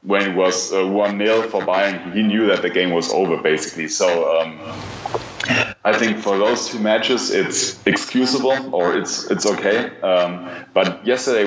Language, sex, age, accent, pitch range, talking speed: English, male, 20-39, German, 85-100 Hz, 165 wpm